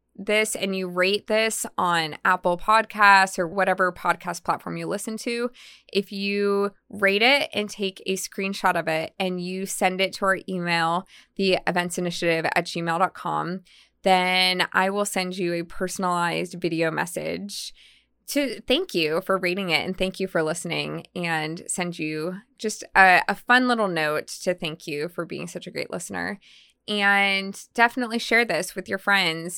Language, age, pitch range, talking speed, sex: English, 20-39, 175-205 Hz, 165 wpm, female